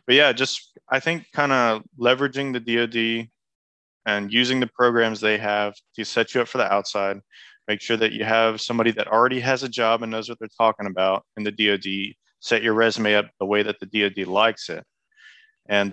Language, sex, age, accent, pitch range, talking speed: English, male, 20-39, American, 105-120 Hz, 205 wpm